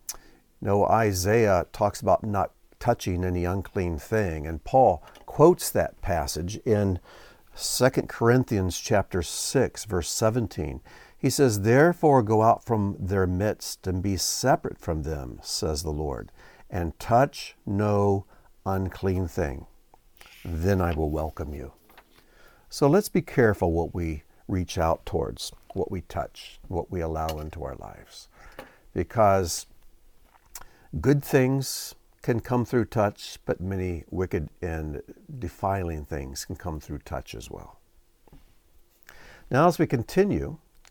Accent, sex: American, male